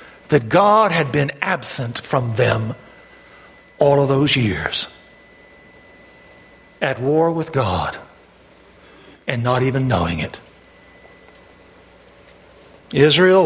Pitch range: 130-180 Hz